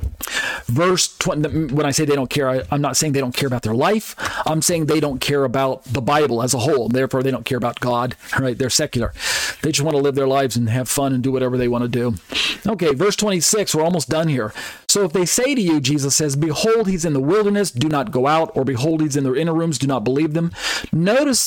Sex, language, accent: male, English, American